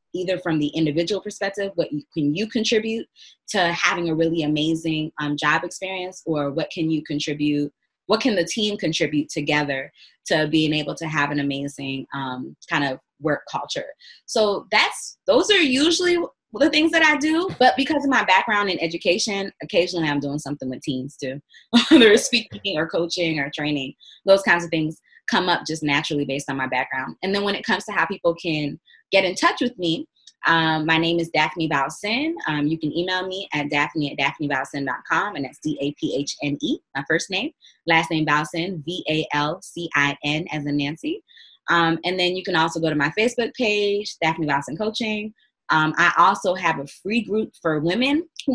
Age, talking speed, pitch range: 20-39, 185 wpm, 150-205 Hz